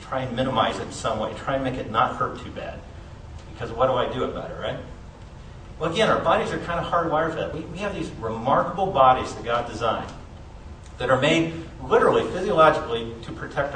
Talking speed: 215 wpm